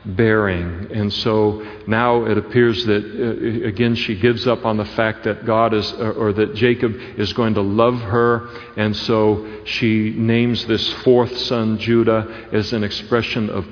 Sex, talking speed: male, 170 wpm